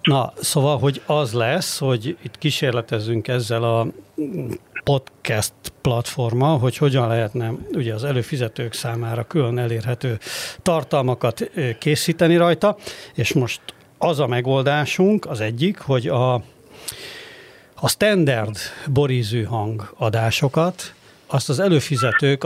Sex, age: male, 60-79